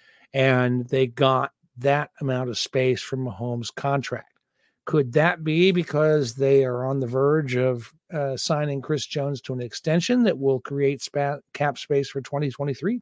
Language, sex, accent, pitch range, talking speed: English, male, American, 140-180 Hz, 155 wpm